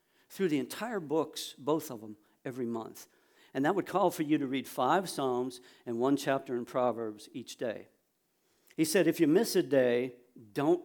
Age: 60-79